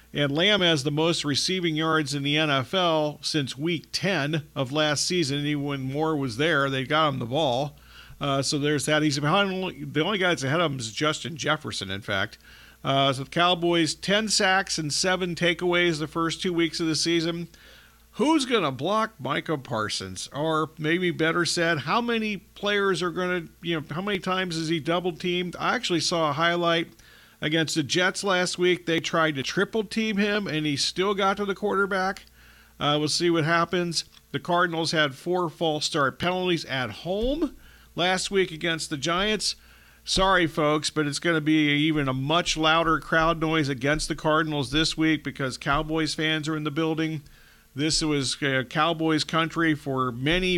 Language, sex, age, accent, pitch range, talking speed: English, male, 50-69, American, 150-180 Hz, 190 wpm